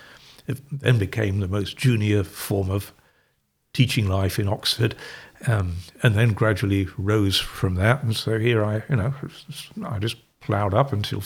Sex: male